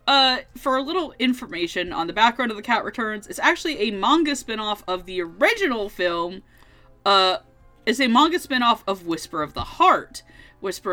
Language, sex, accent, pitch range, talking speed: English, female, American, 170-260 Hz, 175 wpm